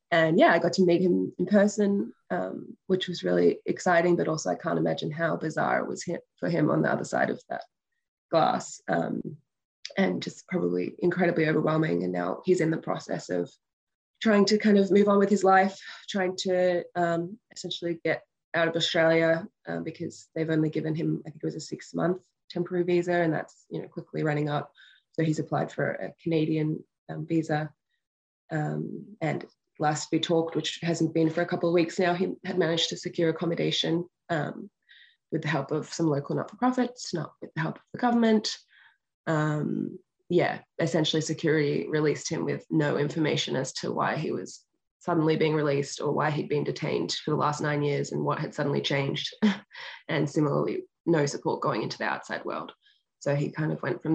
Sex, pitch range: female, 155-185 Hz